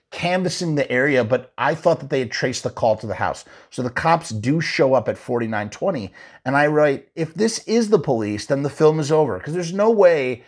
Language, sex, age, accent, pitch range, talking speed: English, male, 30-49, American, 110-145 Hz, 230 wpm